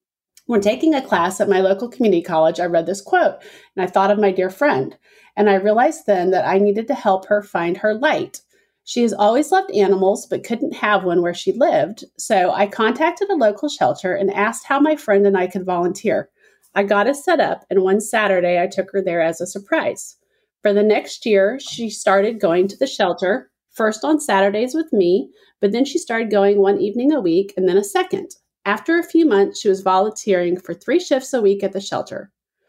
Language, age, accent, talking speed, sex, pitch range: English, 30-49, American, 215 wpm, female, 190-250 Hz